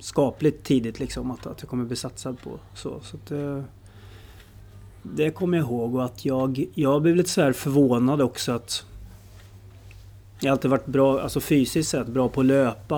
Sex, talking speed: male, 165 wpm